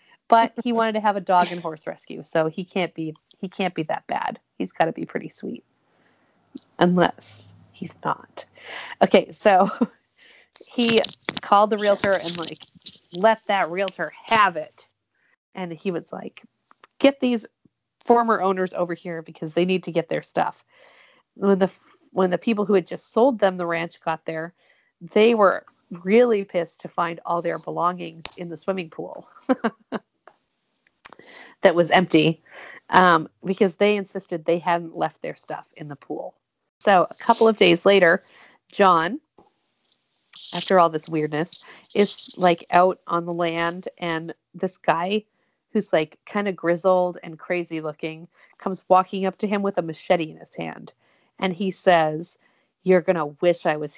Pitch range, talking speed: 165-200 Hz, 165 wpm